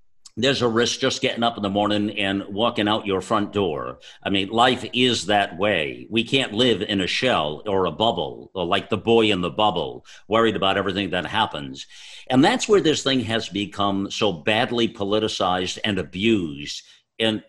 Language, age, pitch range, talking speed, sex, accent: English, 50-69, 100-125 Hz, 185 wpm, male, American